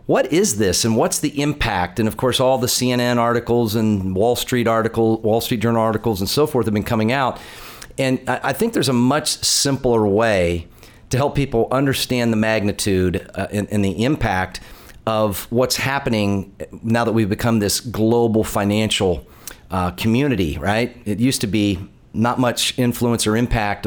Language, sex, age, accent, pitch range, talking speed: English, male, 40-59, American, 100-120 Hz, 170 wpm